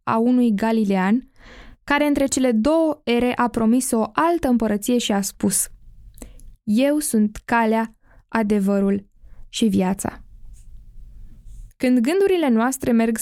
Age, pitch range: 10-29, 205-260 Hz